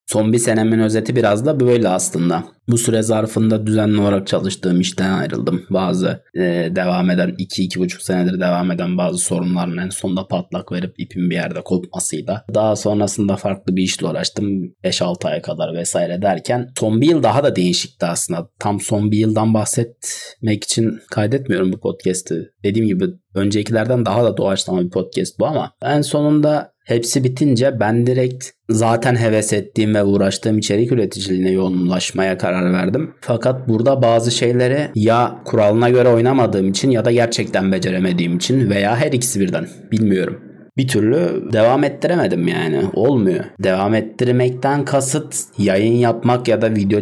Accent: native